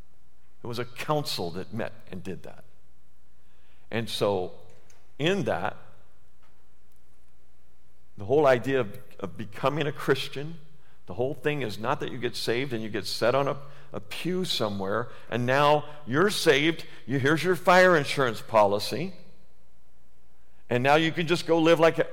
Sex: male